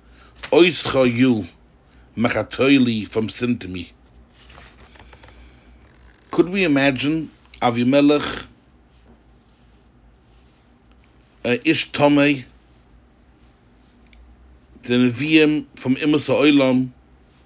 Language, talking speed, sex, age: English, 55 wpm, male, 60-79